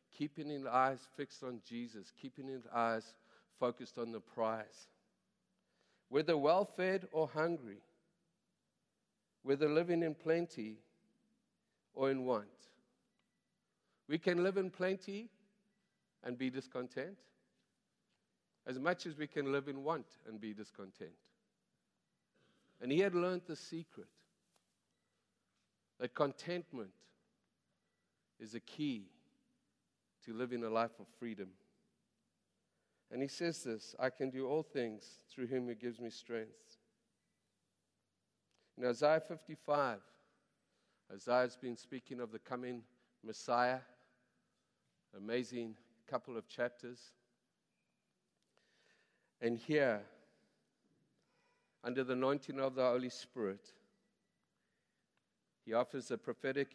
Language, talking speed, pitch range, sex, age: English, 110 wpm, 115-150 Hz, male, 50-69